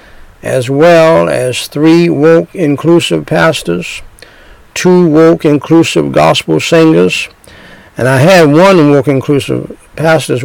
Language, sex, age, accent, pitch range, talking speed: English, male, 60-79, American, 120-160 Hz, 110 wpm